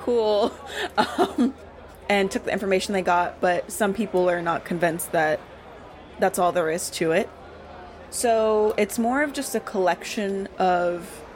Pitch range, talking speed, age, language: 175-200 Hz, 155 wpm, 20-39, English